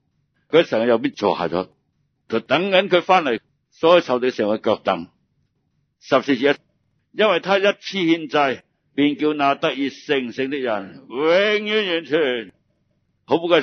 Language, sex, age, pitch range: Chinese, male, 60-79, 110-150 Hz